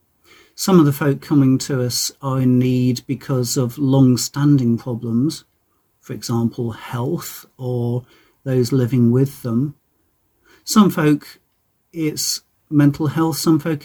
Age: 40-59